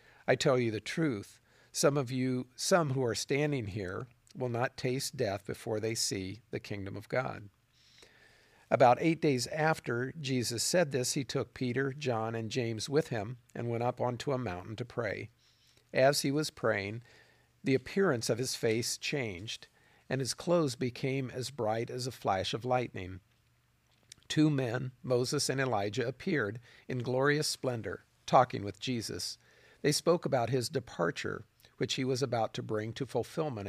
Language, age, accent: English, 50-69, American